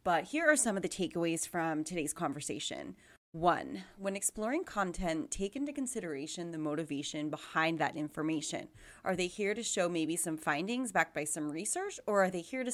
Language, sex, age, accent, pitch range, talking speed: English, female, 30-49, American, 165-230 Hz, 185 wpm